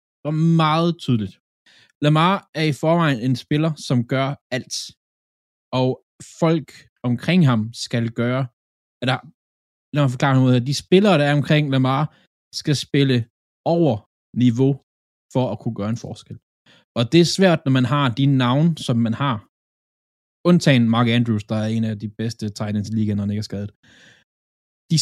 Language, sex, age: Danish, male, 20-39